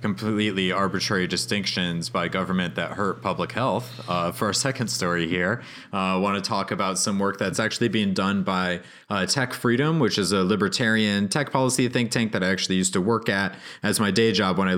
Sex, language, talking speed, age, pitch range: male, English, 210 wpm, 30-49, 95-120 Hz